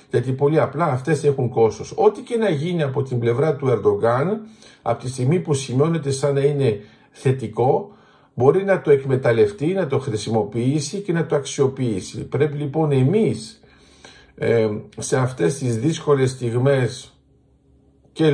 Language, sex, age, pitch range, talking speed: Greek, male, 50-69, 120-155 Hz, 145 wpm